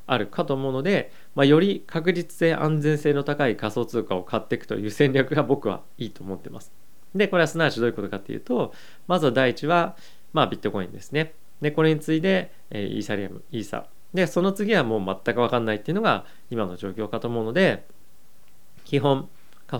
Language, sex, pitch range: Japanese, male, 110-150 Hz